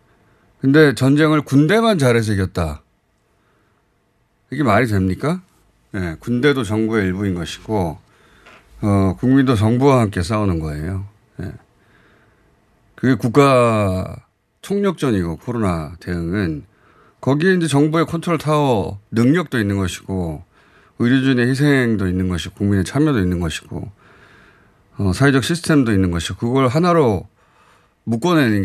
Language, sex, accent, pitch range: Korean, male, native, 95-145 Hz